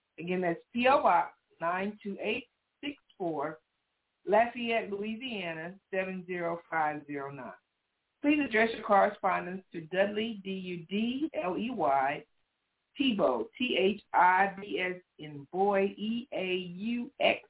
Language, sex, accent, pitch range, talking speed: English, female, American, 175-220 Hz, 140 wpm